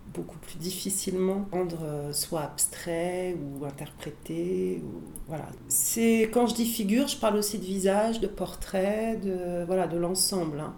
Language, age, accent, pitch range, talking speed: French, 40-59, French, 175-210 Hz, 130 wpm